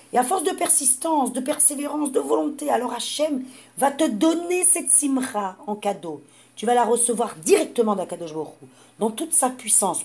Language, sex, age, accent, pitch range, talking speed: French, female, 50-69, French, 180-250 Hz, 165 wpm